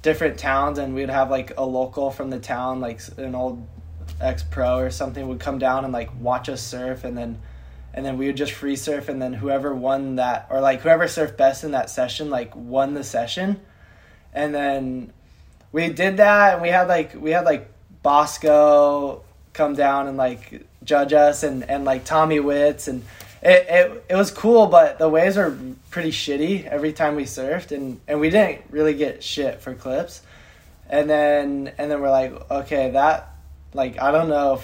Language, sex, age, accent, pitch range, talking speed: English, male, 20-39, American, 125-155 Hz, 195 wpm